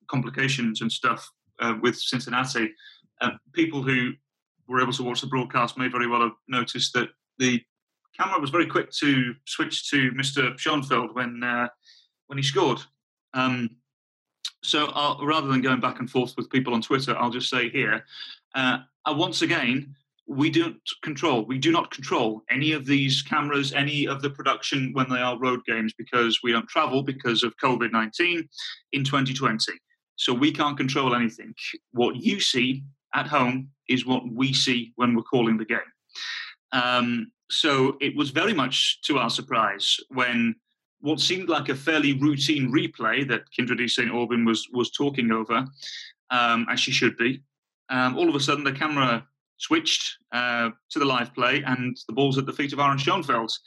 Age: 30-49